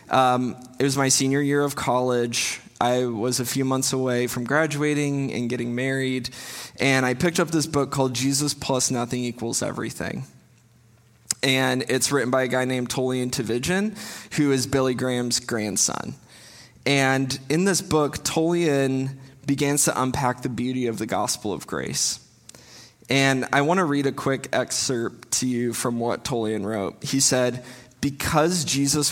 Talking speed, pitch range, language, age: 160 wpm, 120-140 Hz, English, 20-39